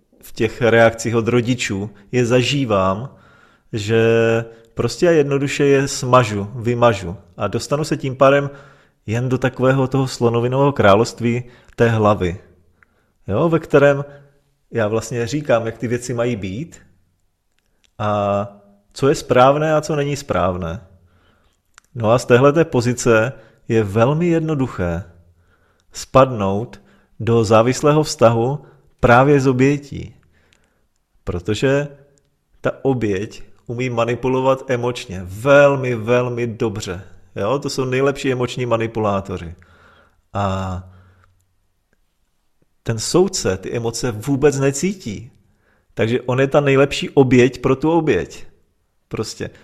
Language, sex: Czech, male